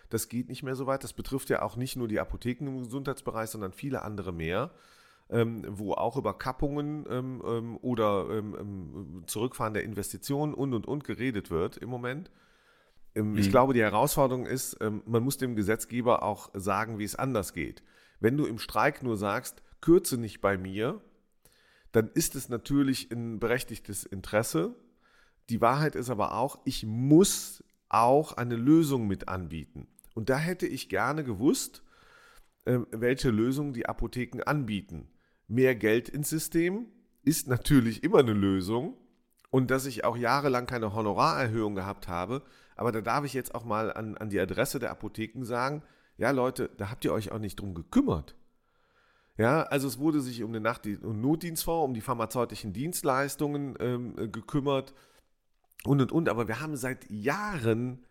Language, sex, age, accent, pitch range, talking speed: German, male, 40-59, German, 110-135 Hz, 160 wpm